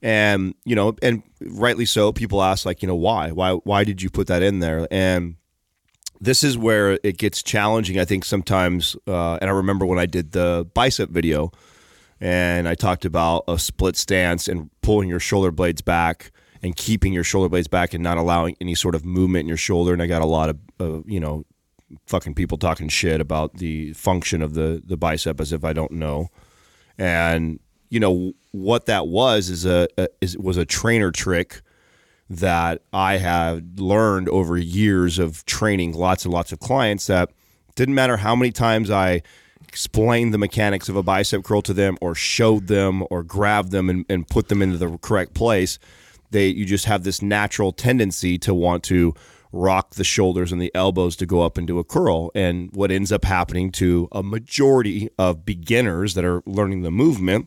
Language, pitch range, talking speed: English, 85-100 Hz, 195 wpm